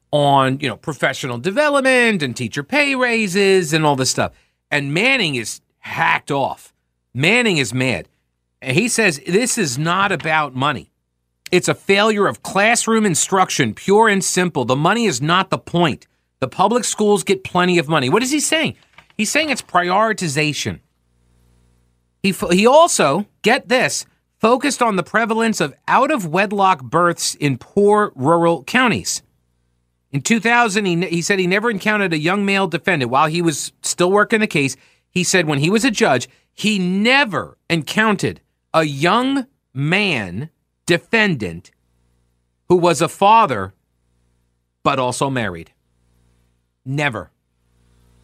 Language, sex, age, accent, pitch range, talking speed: English, male, 40-59, American, 120-200 Hz, 145 wpm